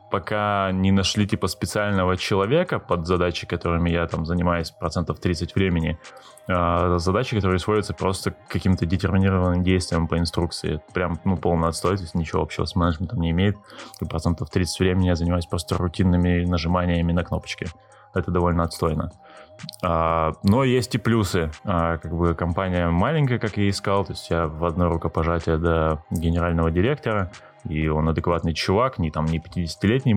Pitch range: 85-95 Hz